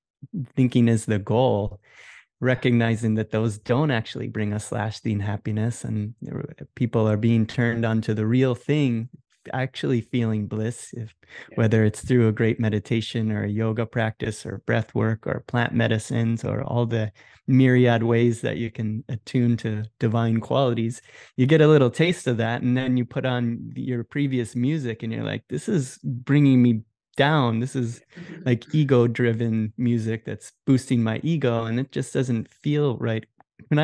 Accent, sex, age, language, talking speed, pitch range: American, male, 20-39, English, 165 wpm, 110-130 Hz